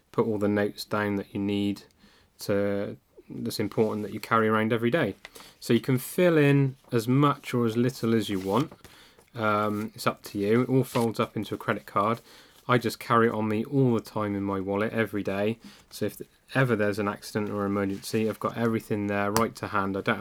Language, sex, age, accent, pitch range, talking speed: English, male, 20-39, British, 105-115 Hz, 220 wpm